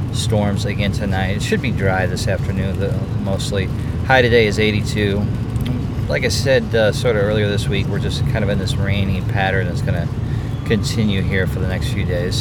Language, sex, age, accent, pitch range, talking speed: English, male, 40-59, American, 105-125 Hz, 200 wpm